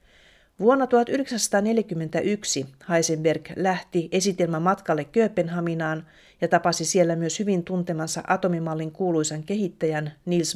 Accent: native